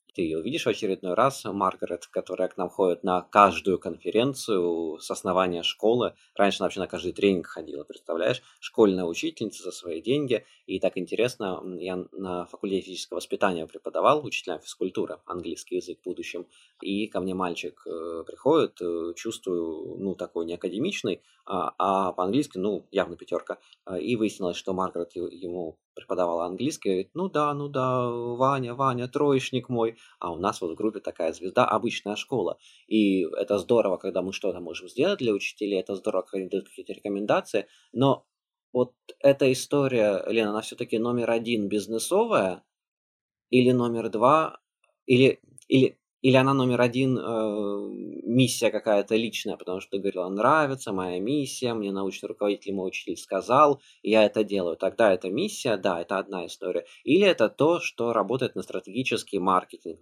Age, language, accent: 20-39, Russian, native